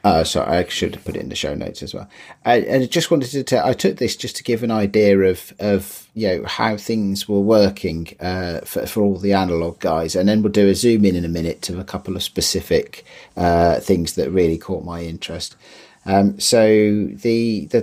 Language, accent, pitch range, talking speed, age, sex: English, British, 95-110 Hz, 225 wpm, 40-59, male